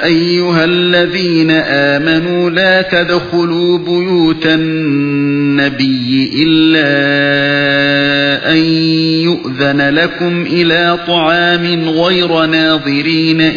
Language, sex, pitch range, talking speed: English, male, 140-165 Hz, 65 wpm